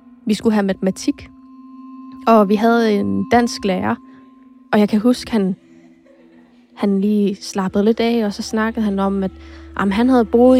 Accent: native